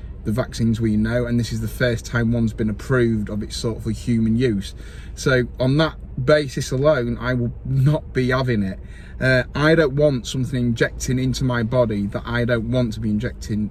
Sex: male